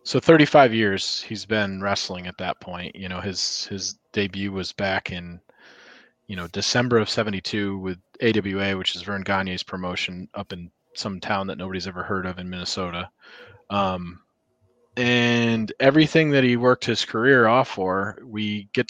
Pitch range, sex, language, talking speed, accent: 95-125 Hz, male, English, 165 wpm, American